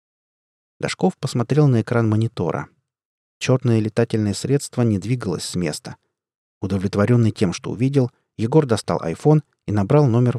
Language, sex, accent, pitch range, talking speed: Russian, male, native, 100-135 Hz, 125 wpm